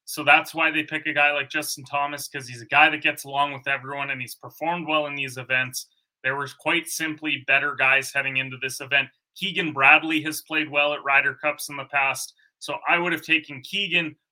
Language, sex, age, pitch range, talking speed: English, male, 30-49, 140-160 Hz, 220 wpm